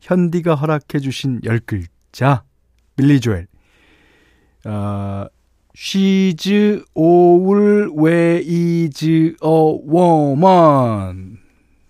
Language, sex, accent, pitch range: Korean, male, native, 110-155 Hz